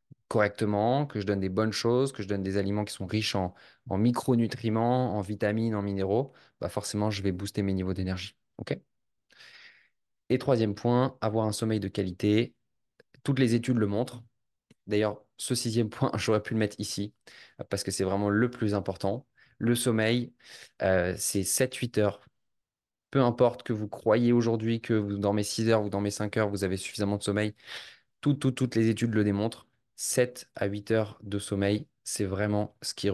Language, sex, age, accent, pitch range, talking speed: French, male, 20-39, French, 100-120 Hz, 190 wpm